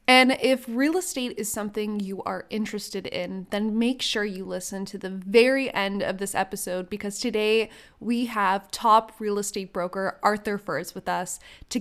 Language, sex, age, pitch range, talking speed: English, female, 20-39, 195-245 Hz, 180 wpm